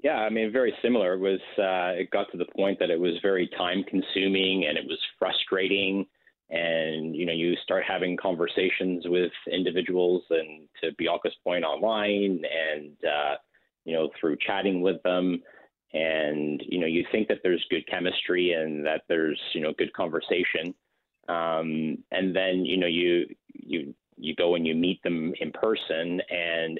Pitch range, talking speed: 80-95 Hz, 170 wpm